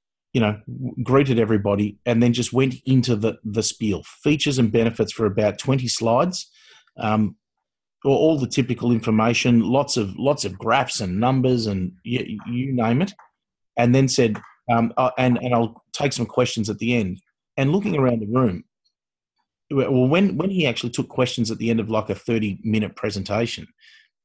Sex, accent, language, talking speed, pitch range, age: male, Australian, English, 175 wpm, 105-130 Hz, 30-49